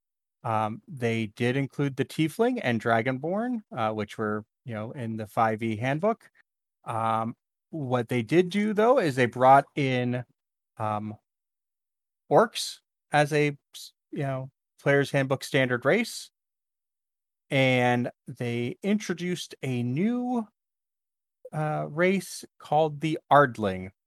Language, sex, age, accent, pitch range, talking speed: English, male, 30-49, American, 110-150 Hz, 115 wpm